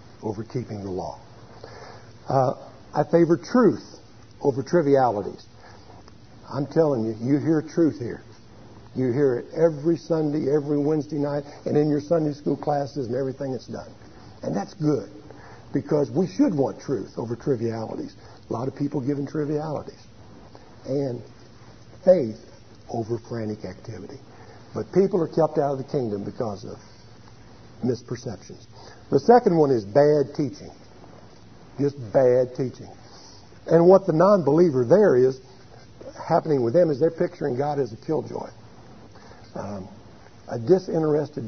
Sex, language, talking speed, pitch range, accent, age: male, English, 135 wpm, 110-150 Hz, American, 60-79